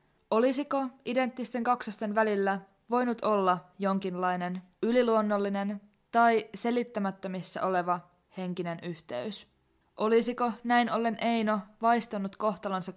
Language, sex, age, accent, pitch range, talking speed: Finnish, female, 20-39, native, 190-230 Hz, 90 wpm